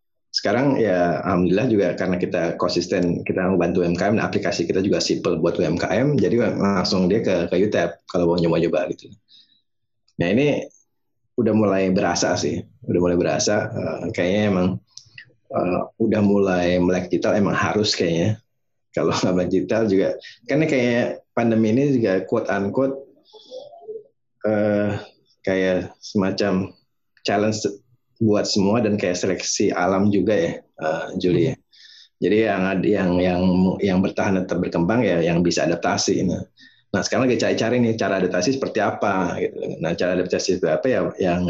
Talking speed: 145 wpm